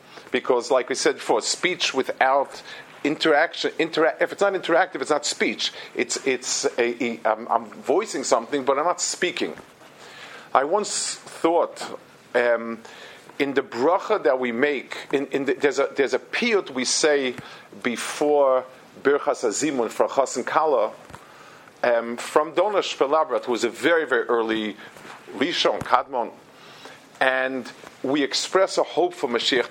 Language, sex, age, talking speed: English, male, 50-69, 145 wpm